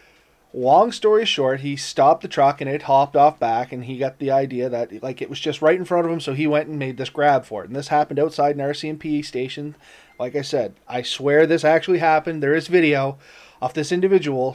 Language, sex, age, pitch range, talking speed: English, male, 20-39, 135-190 Hz, 235 wpm